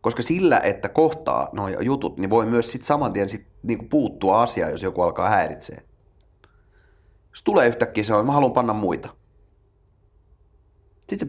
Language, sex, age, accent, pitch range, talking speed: Finnish, male, 30-49, native, 95-120 Hz, 155 wpm